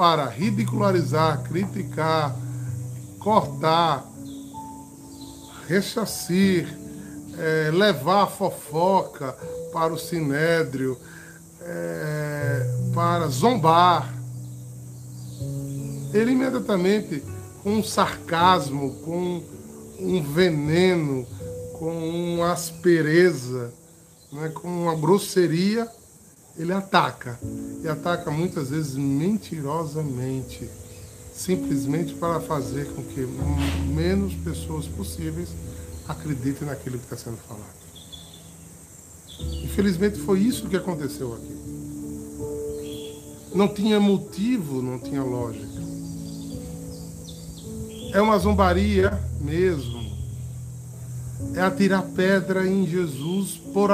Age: 20-39